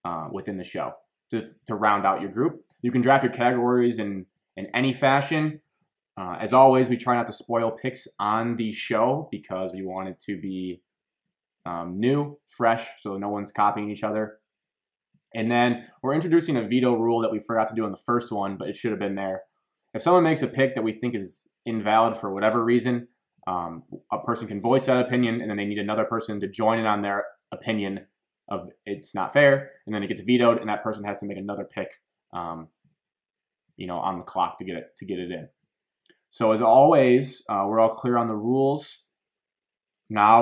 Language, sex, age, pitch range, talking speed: English, male, 20-39, 100-120 Hz, 210 wpm